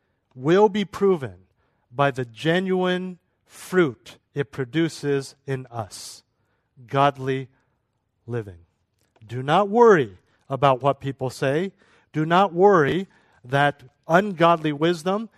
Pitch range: 115-155 Hz